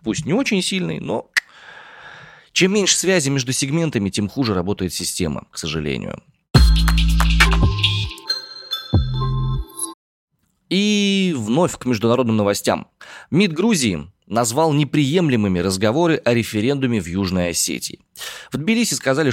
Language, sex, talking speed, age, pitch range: Russian, male, 105 wpm, 20-39, 95-140 Hz